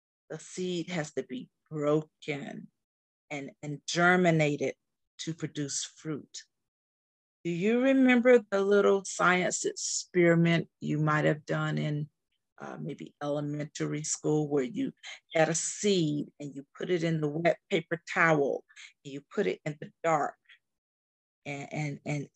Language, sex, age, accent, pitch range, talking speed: English, female, 40-59, American, 140-170 Hz, 135 wpm